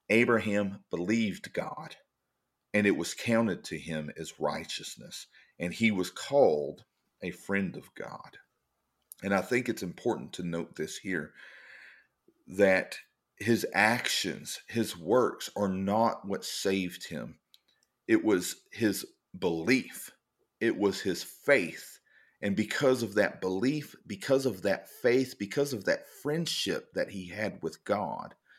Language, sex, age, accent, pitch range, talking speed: English, male, 40-59, American, 90-115 Hz, 135 wpm